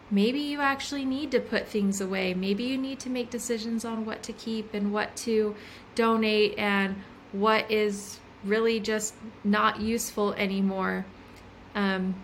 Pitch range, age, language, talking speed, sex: 200-240 Hz, 20-39, English, 150 wpm, female